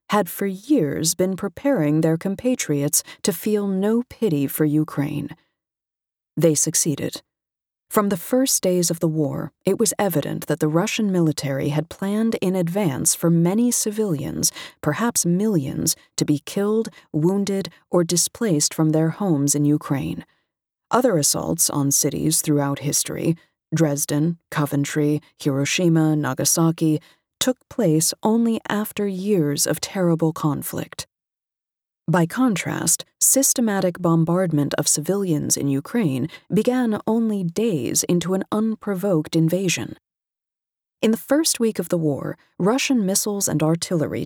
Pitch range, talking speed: 155-205 Hz, 125 wpm